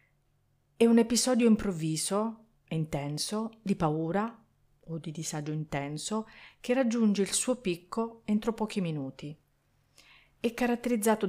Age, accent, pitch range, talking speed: 40-59, native, 150-200 Hz, 115 wpm